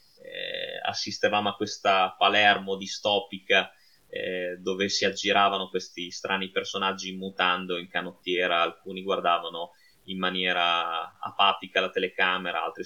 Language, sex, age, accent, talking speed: Italian, male, 20-39, native, 110 wpm